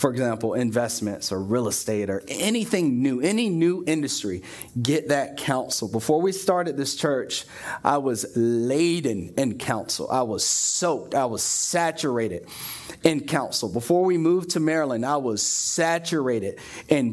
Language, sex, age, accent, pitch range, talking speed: English, male, 30-49, American, 115-155 Hz, 145 wpm